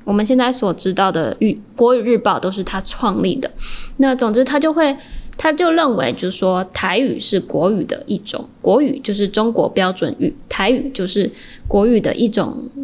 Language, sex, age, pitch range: Chinese, female, 10-29, 195-265 Hz